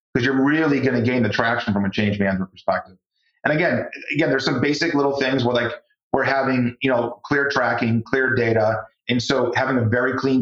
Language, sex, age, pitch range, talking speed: English, male, 30-49, 115-150 Hz, 215 wpm